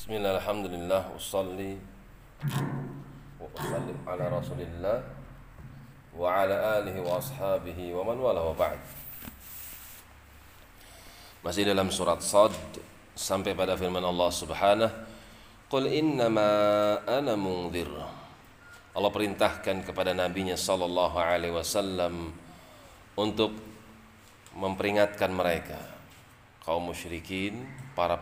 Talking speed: 95 wpm